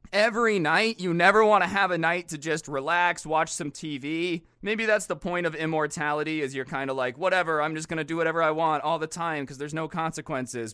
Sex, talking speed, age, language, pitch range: male, 230 wpm, 30-49, English, 125-165 Hz